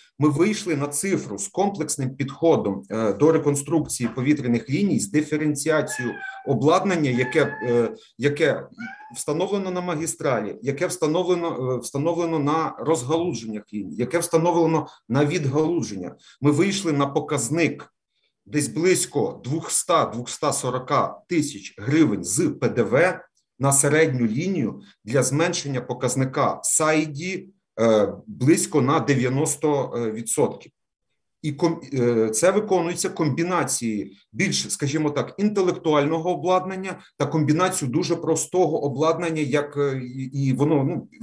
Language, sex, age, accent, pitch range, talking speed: Ukrainian, male, 40-59, native, 140-170 Hz, 100 wpm